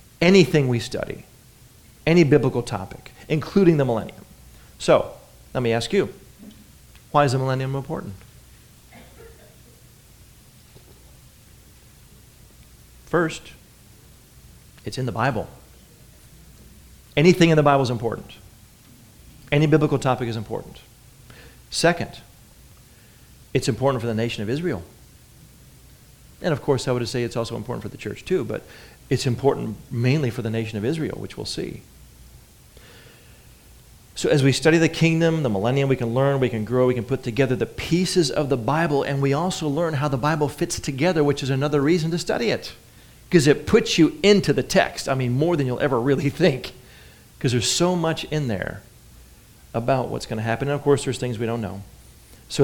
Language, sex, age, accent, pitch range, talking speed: English, male, 40-59, American, 115-150 Hz, 160 wpm